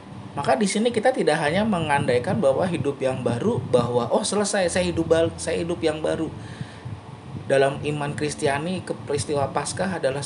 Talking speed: 165 wpm